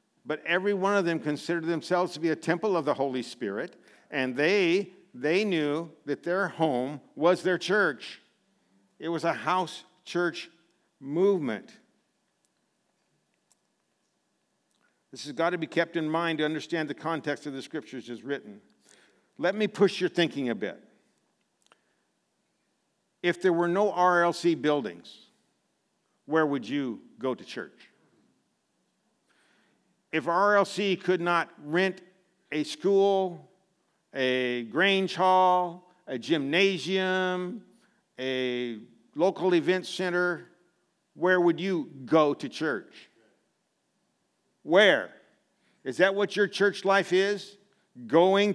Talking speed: 120 wpm